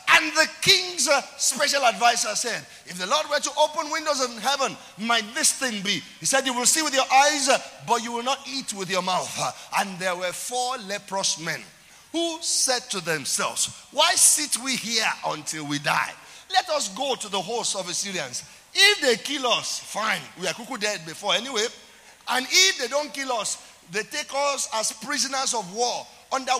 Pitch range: 210-290 Hz